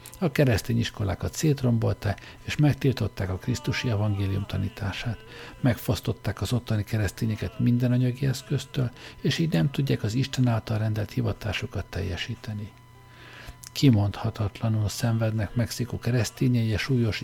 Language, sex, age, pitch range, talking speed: Hungarian, male, 60-79, 105-130 Hz, 110 wpm